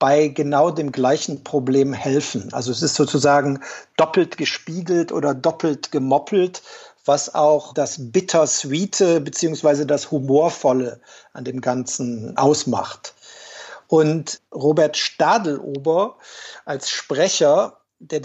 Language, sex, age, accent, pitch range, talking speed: German, male, 50-69, German, 145-175 Hz, 105 wpm